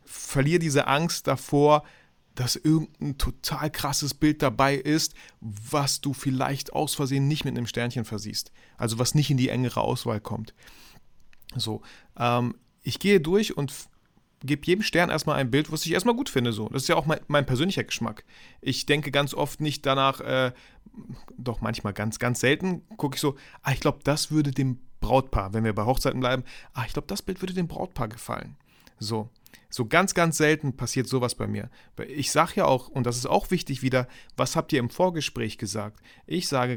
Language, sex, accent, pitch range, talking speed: German, male, German, 120-150 Hz, 195 wpm